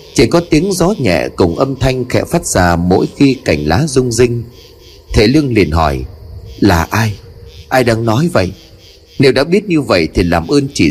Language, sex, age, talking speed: Vietnamese, male, 30-49, 200 wpm